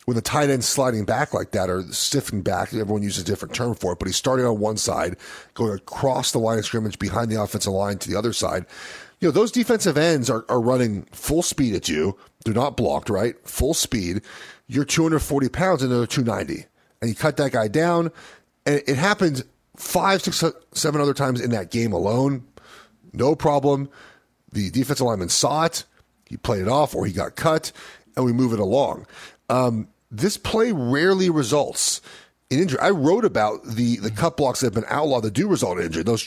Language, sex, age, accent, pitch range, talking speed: English, male, 40-59, American, 110-150 Hz, 205 wpm